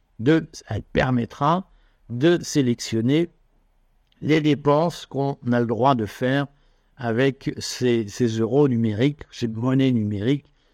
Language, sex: French, male